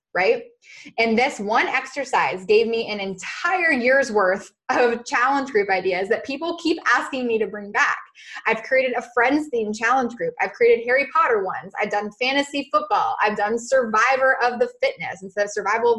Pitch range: 220-310 Hz